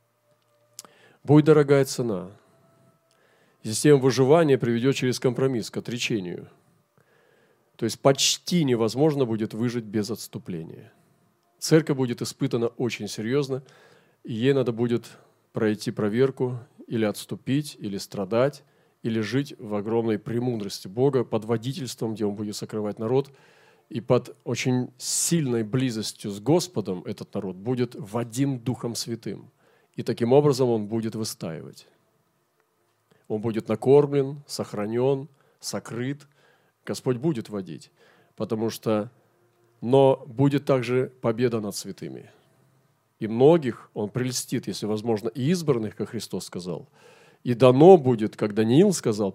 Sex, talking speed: male, 120 wpm